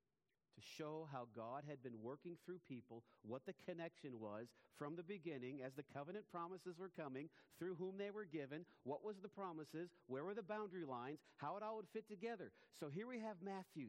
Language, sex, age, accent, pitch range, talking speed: English, male, 50-69, American, 120-185 Hz, 205 wpm